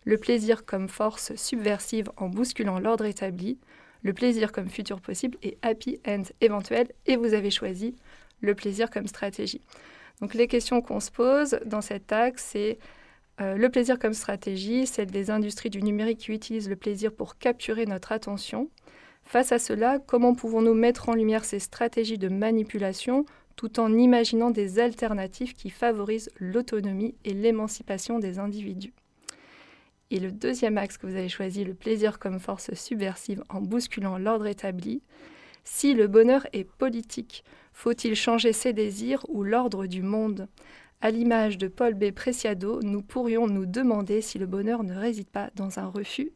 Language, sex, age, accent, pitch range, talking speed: French, female, 20-39, French, 205-240 Hz, 165 wpm